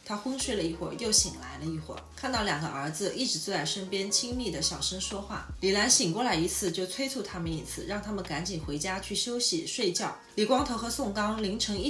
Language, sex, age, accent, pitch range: Chinese, female, 20-39, native, 165-220 Hz